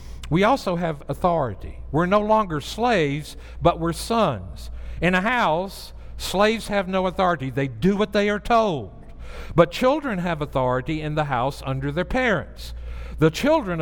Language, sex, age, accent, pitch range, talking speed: English, male, 60-79, American, 145-215 Hz, 155 wpm